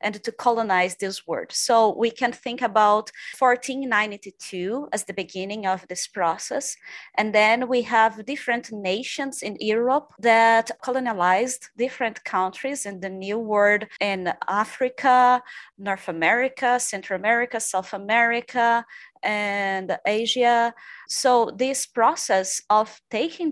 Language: English